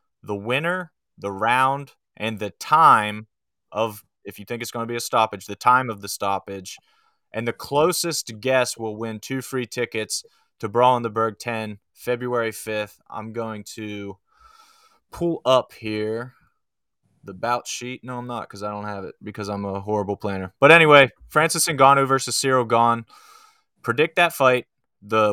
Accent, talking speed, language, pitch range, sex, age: American, 170 wpm, English, 110-135 Hz, male, 20-39